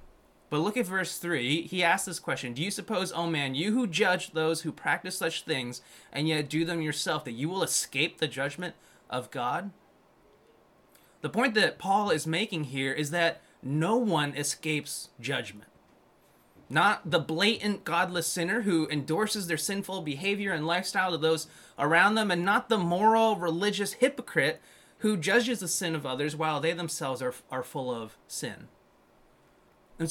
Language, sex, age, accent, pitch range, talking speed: English, male, 20-39, American, 155-190 Hz, 170 wpm